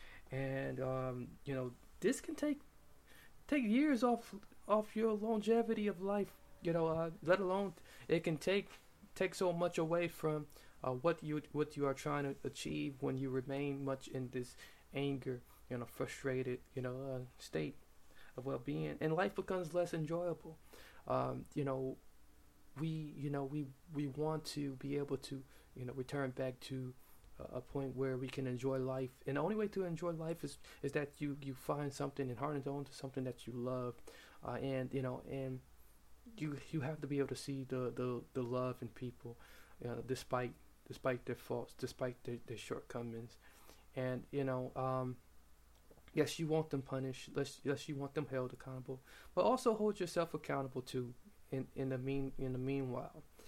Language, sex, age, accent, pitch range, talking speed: English, male, 20-39, American, 130-160 Hz, 185 wpm